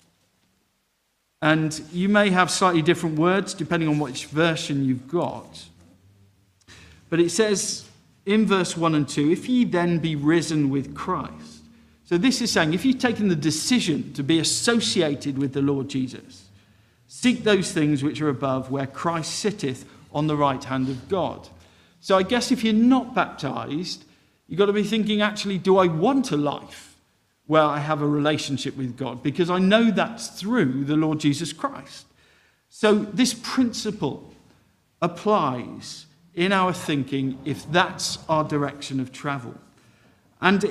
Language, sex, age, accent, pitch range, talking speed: English, male, 50-69, British, 140-195 Hz, 160 wpm